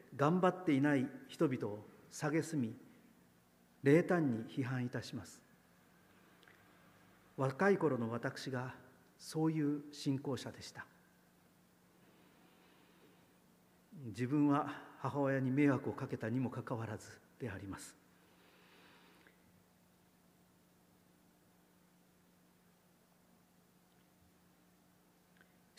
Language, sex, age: Japanese, male, 50-69